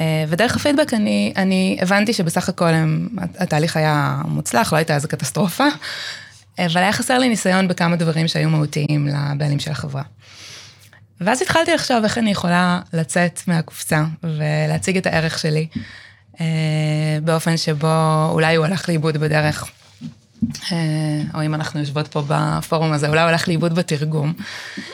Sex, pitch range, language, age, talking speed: female, 155-180 Hz, Hebrew, 20-39, 135 wpm